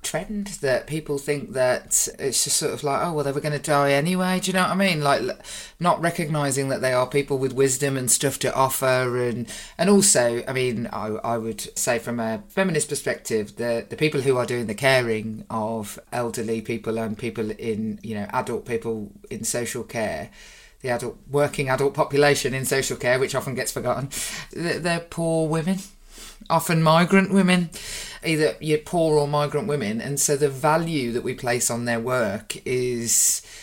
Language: English